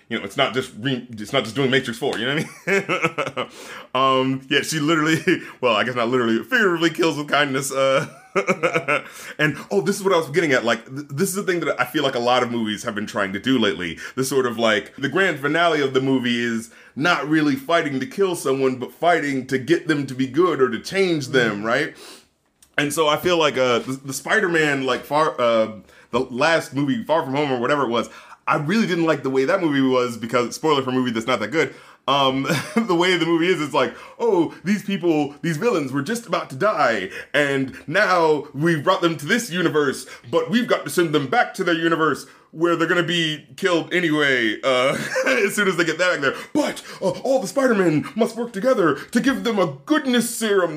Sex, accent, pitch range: male, American, 130-200 Hz